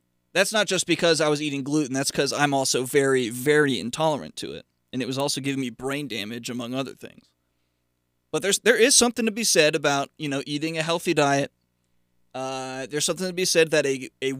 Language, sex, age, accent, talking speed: English, male, 20-39, American, 215 wpm